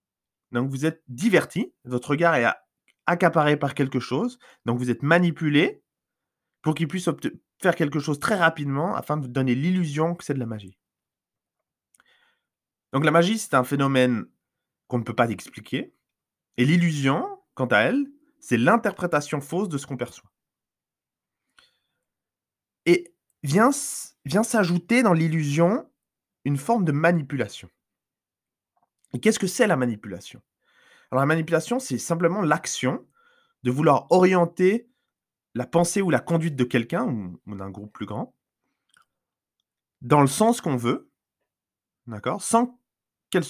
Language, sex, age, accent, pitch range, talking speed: French, male, 20-39, French, 120-175 Hz, 140 wpm